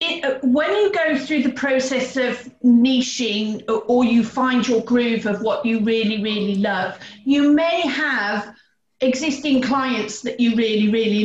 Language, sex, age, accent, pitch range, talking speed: English, female, 40-59, British, 235-280 Hz, 160 wpm